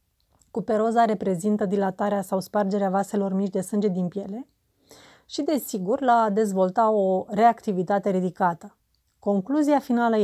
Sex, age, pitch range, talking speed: female, 30-49, 195-230 Hz, 125 wpm